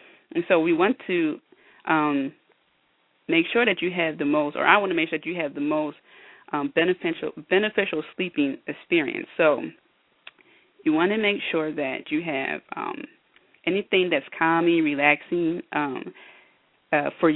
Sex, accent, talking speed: female, American, 160 wpm